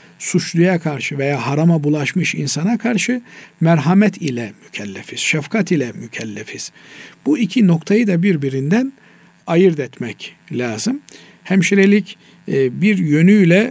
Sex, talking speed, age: male, 105 wpm, 50-69